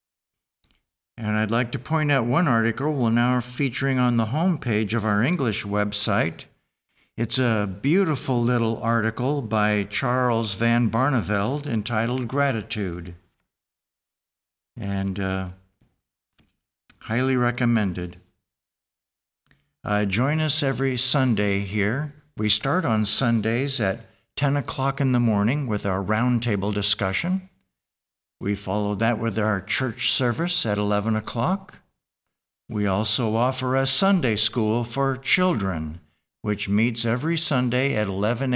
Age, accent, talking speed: 60-79, American, 120 wpm